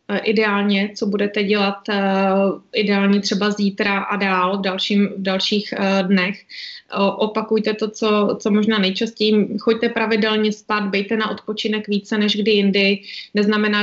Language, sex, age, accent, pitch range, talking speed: Czech, female, 20-39, native, 205-225 Hz, 140 wpm